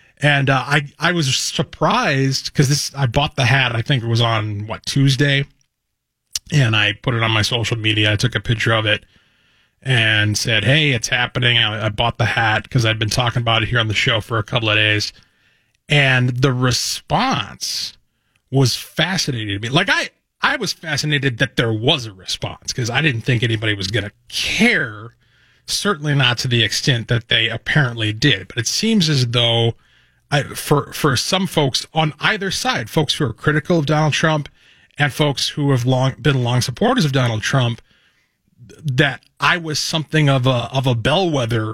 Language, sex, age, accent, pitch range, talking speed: English, male, 30-49, American, 115-150 Hz, 190 wpm